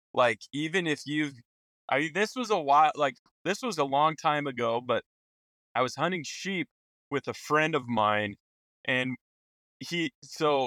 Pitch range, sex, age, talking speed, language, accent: 130-170 Hz, male, 20-39, 170 wpm, English, American